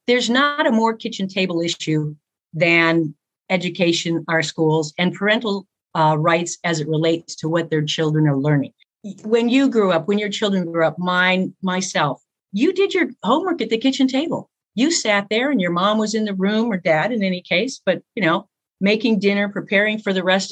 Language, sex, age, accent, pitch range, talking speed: English, female, 50-69, American, 160-215 Hz, 195 wpm